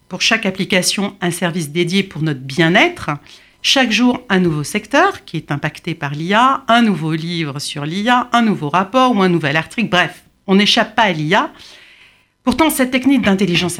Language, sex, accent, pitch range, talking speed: French, female, French, 160-210 Hz, 180 wpm